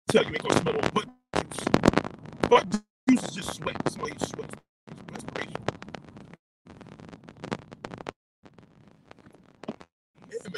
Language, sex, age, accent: English, male, 40-59, American